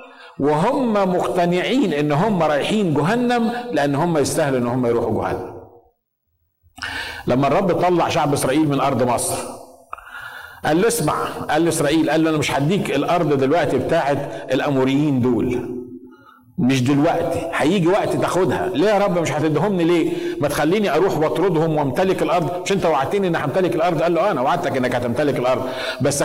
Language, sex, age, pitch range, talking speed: Arabic, male, 50-69, 140-195 Hz, 155 wpm